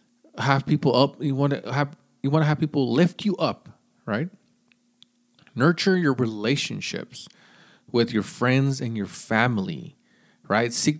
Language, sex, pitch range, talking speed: English, male, 115-180 Hz, 145 wpm